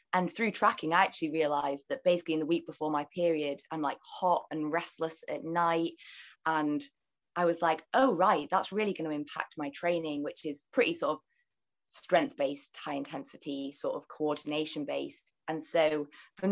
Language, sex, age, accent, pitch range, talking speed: English, female, 20-39, British, 150-175 Hz, 180 wpm